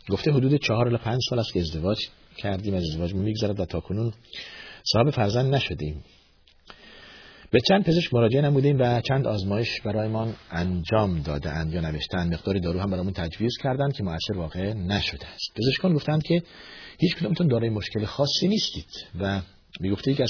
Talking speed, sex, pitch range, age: 165 wpm, male, 90-125 Hz, 50-69